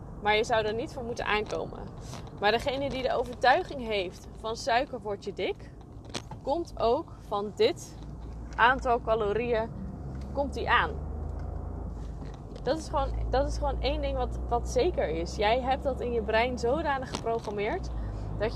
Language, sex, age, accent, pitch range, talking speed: Dutch, female, 20-39, Dutch, 195-235 Hz, 145 wpm